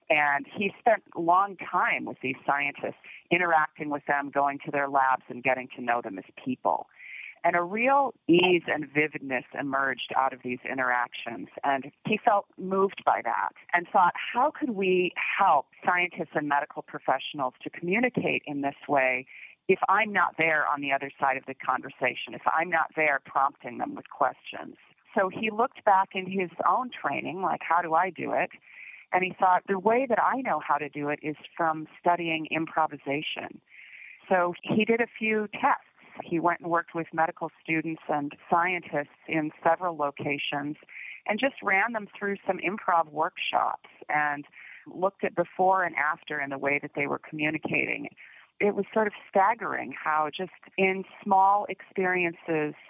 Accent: American